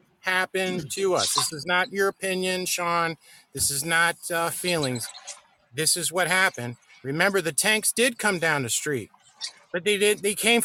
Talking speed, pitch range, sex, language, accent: 175 wpm, 165-195 Hz, male, English, American